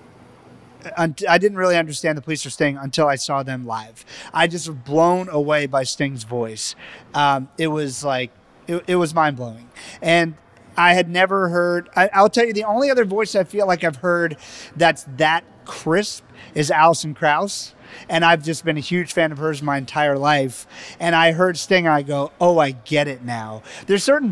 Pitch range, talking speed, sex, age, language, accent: 150-190 Hz, 195 wpm, male, 30-49, English, American